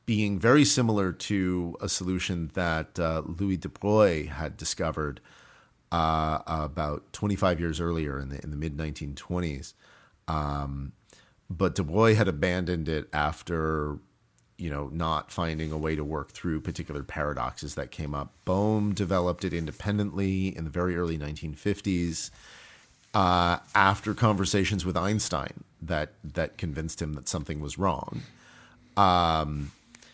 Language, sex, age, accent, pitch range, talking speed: English, male, 40-59, American, 75-100 Hz, 135 wpm